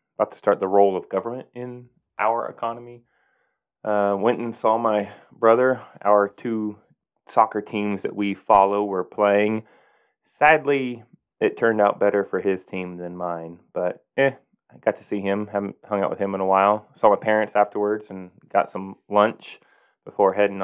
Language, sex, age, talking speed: English, male, 20-39, 175 wpm